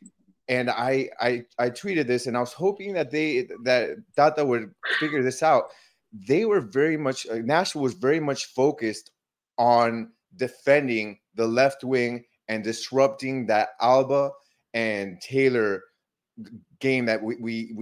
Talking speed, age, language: 140 wpm, 30-49, English